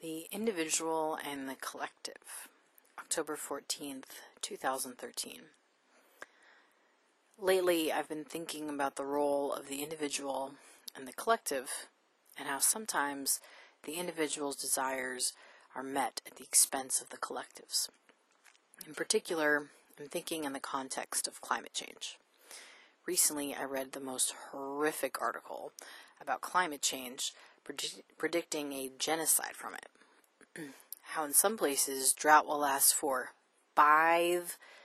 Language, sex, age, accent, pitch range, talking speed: English, female, 30-49, American, 140-165 Hz, 120 wpm